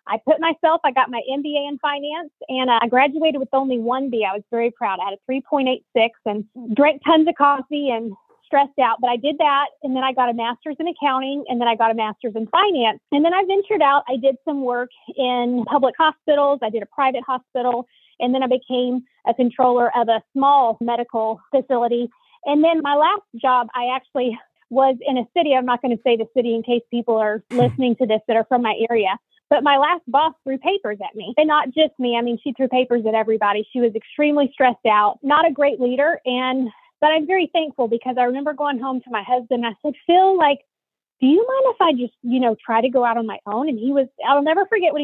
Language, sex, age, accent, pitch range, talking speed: English, female, 30-49, American, 235-295 Hz, 240 wpm